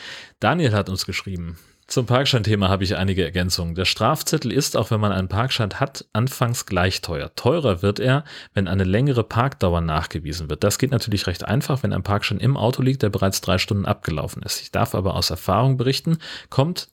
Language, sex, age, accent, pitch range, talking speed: German, male, 30-49, German, 95-120 Hz, 195 wpm